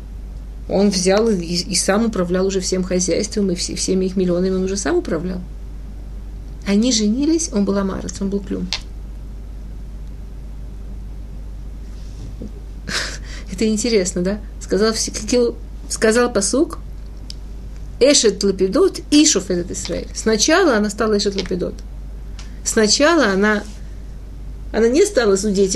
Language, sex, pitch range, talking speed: Russian, female, 175-205 Hz, 105 wpm